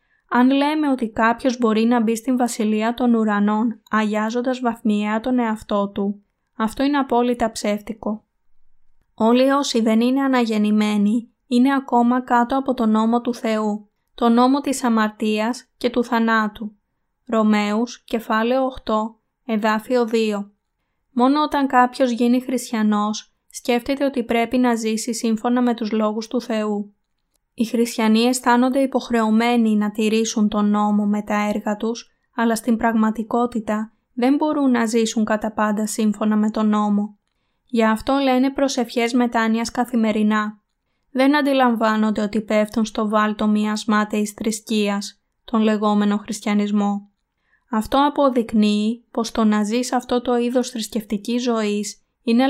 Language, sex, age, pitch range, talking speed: Greek, female, 20-39, 215-245 Hz, 135 wpm